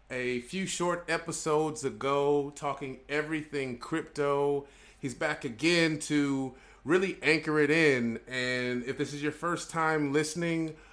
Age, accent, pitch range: 30-49, American, 135-165 Hz